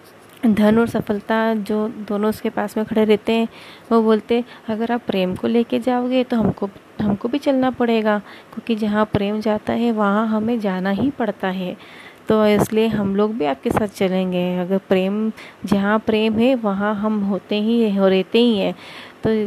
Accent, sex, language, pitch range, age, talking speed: native, female, Hindi, 195-220 Hz, 30-49, 180 wpm